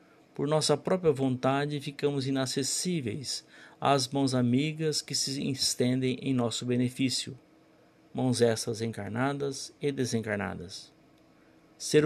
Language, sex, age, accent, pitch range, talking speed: Portuguese, male, 50-69, Brazilian, 125-155 Hz, 105 wpm